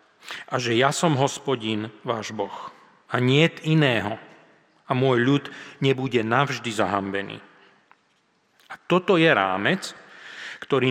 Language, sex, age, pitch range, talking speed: Slovak, male, 40-59, 120-155 Hz, 115 wpm